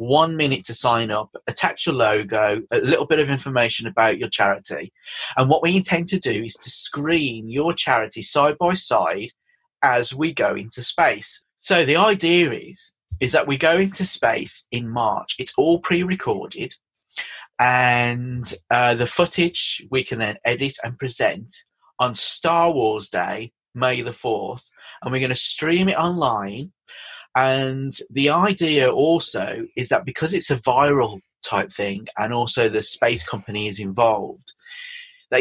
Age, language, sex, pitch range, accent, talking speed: 30-49, English, male, 115-165 Hz, British, 160 wpm